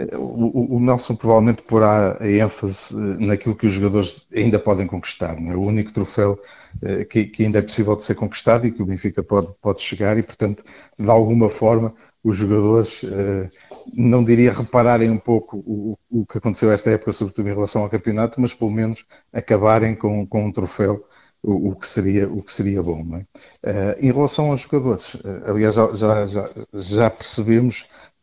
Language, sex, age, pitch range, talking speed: Portuguese, male, 50-69, 105-115 Hz, 155 wpm